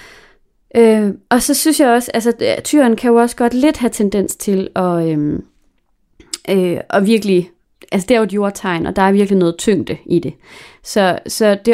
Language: English